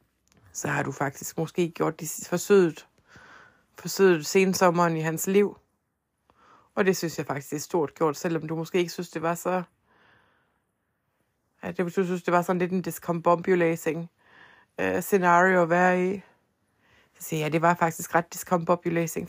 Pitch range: 155-195 Hz